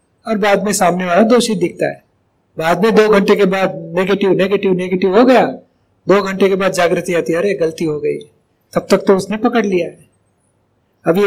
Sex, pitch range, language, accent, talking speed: male, 185-215 Hz, Hindi, native, 155 wpm